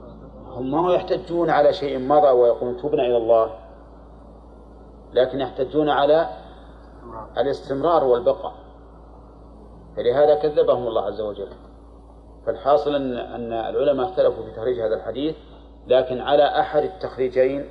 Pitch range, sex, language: 115-145 Hz, male, Arabic